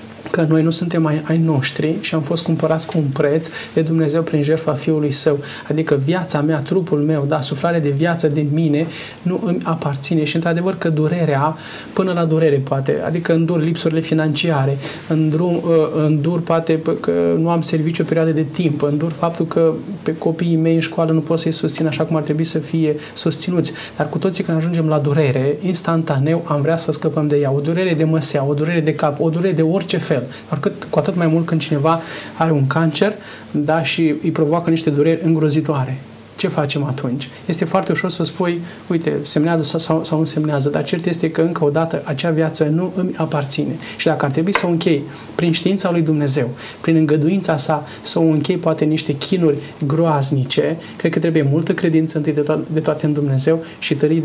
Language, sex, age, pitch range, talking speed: Romanian, male, 20-39, 150-165 Hz, 200 wpm